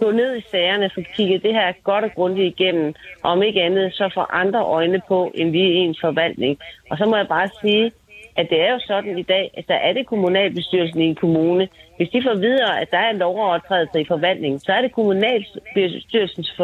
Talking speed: 225 wpm